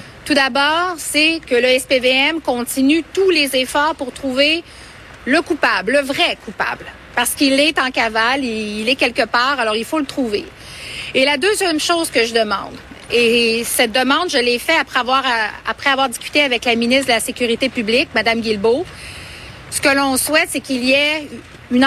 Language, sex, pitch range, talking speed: French, female, 240-290 Hz, 185 wpm